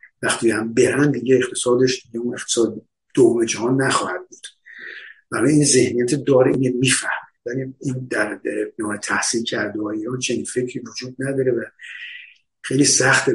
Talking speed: 155 wpm